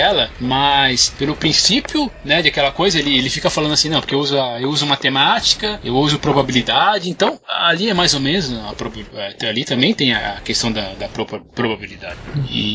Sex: male